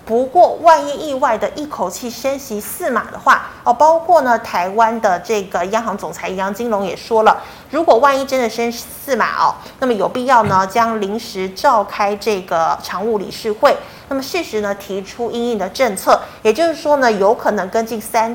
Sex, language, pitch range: female, Chinese, 205-275 Hz